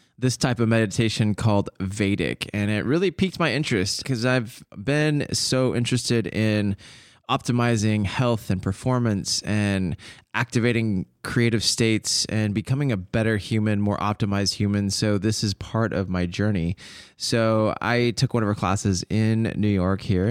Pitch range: 100-125 Hz